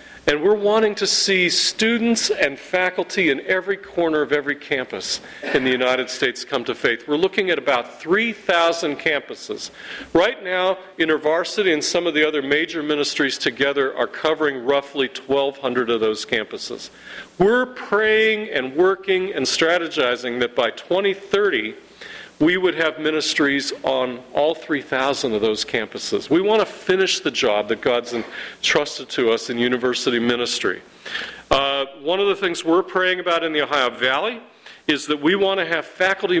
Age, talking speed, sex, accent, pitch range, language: 40-59, 160 wpm, male, American, 140-200 Hz, English